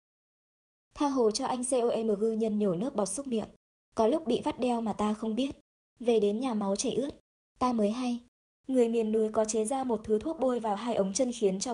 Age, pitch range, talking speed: 20-39, 200-250 Hz, 230 wpm